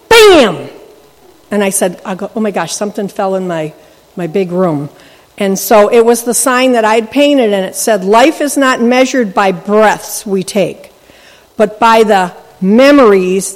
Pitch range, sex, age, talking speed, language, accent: 195-275 Hz, female, 50-69, 180 wpm, English, American